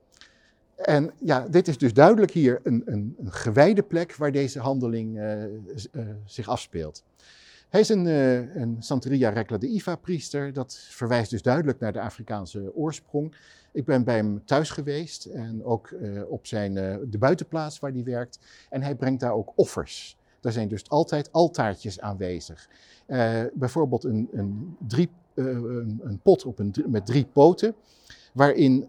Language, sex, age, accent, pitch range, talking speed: Dutch, male, 60-79, Dutch, 110-145 Hz, 170 wpm